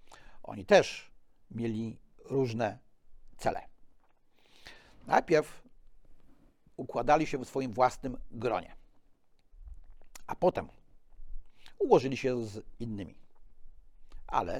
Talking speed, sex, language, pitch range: 80 wpm, male, Polish, 115-155 Hz